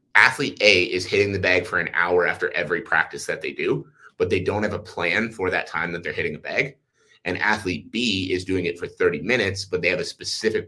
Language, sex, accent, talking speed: English, male, American, 240 wpm